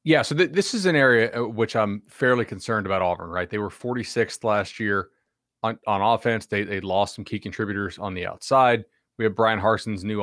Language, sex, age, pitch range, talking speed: English, male, 30-49, 105-125 Hz, 210 wpm